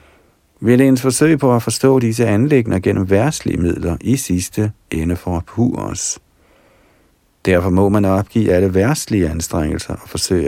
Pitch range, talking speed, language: 85-110 Hz, 155 wpm, Danish